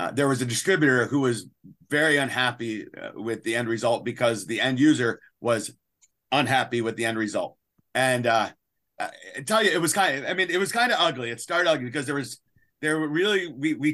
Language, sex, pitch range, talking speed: English, male, 130-175 Hz, 220 wpm